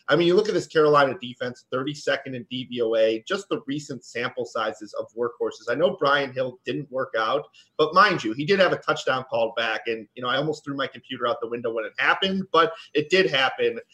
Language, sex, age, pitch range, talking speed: English, male, 30-49, 125-165 Hz, 230 wpm